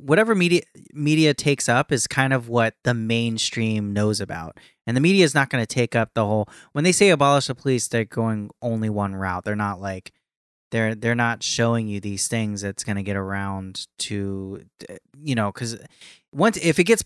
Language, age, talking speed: English, 20-39, 205 wpm